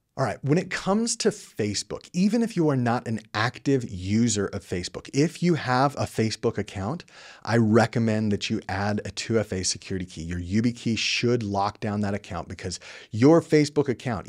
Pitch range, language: 100-130 Hz, English